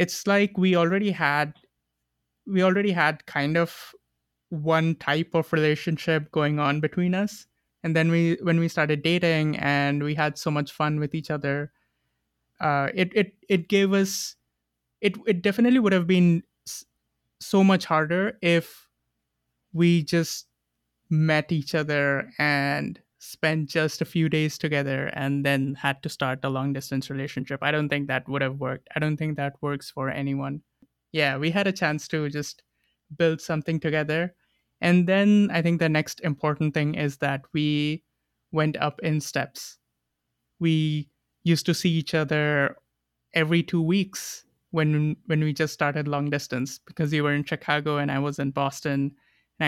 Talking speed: 165 wpm